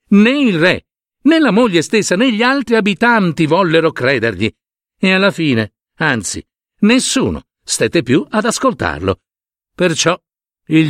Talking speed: 130 wpm